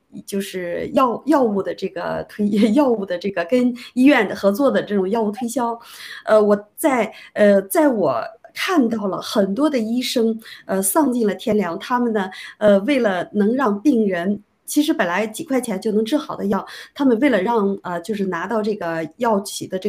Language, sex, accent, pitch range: Chinese, female, native, 195-250 Hz